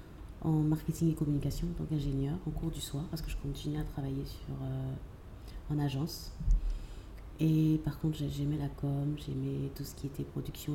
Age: 30-49